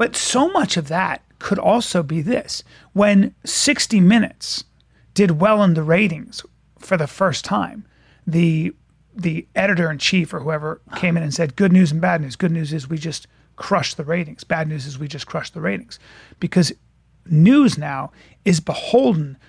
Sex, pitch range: male, 165-215 Hz